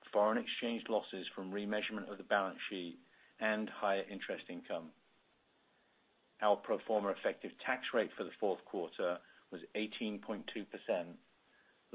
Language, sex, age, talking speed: English, male, 50-69, 125 wpm